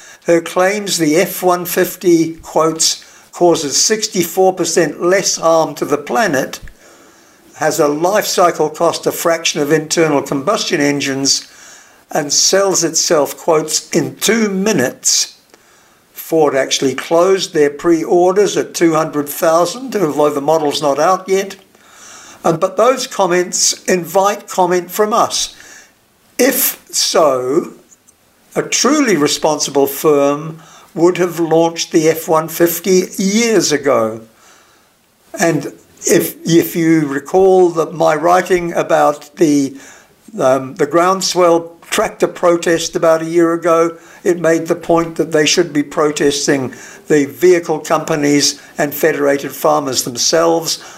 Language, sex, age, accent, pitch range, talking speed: English, male, 60-79, British, 150-180 Hz, 115 wpm